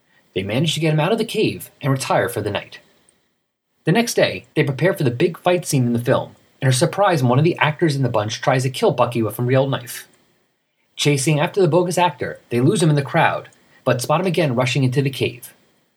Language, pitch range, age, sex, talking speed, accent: English, 125-165 Hz, 30-49, male, 245 wpm, American